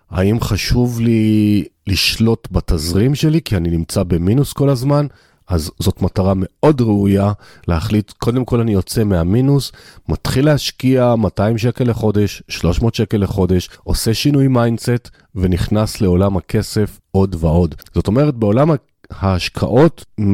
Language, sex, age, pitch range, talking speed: Hebrew, male, 40-59, 95-125 Hz, 125 wpm